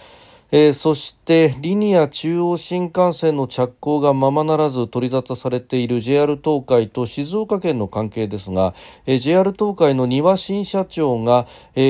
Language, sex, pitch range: Japanese, male, 120-155 Hz